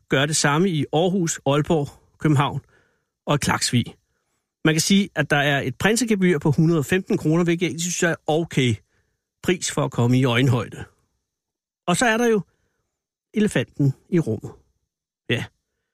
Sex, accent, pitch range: male, native, 130-170 Hz